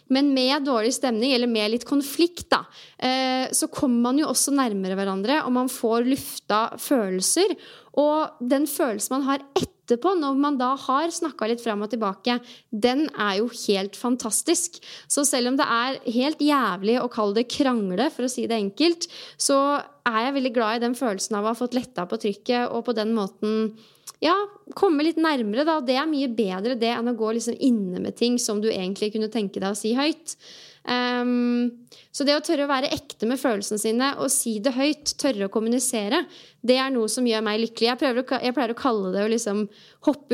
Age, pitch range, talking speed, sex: 20-39, 215-275 Hz, 205 wpm, female